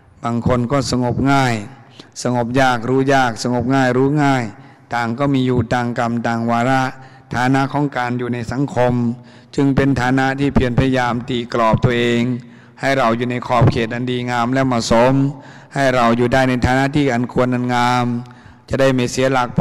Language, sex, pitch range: Thai, male, 120-135 Hz